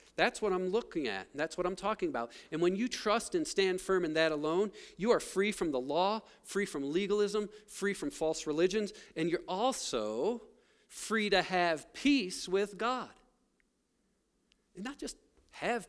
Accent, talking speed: American, 175 wpm